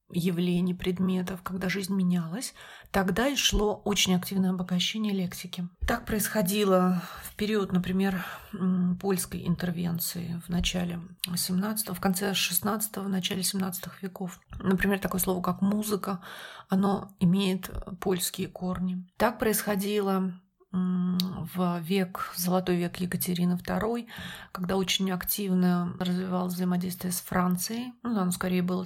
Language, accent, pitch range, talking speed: Russian, native, 180-200 Hz, 125 wpm